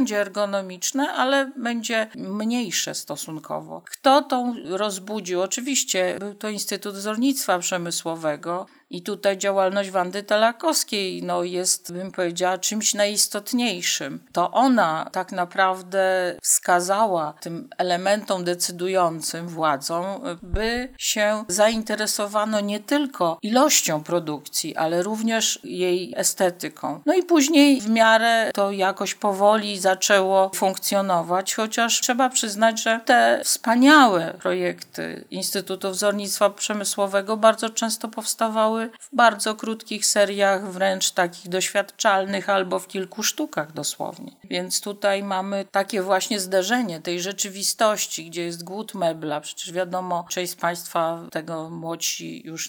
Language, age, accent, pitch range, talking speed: Polish, 50-69, native, 180-220 Hz, 115 wpm